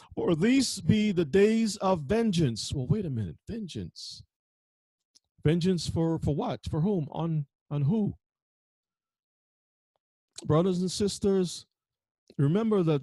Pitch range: 120-155 Hz